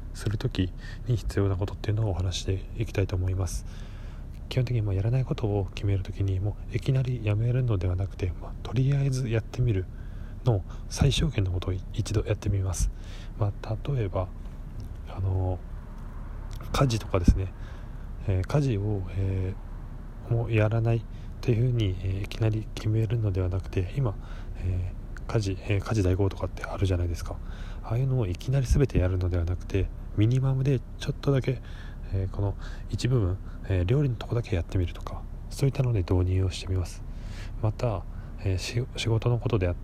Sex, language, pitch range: male, Japanese, 95-115 Hz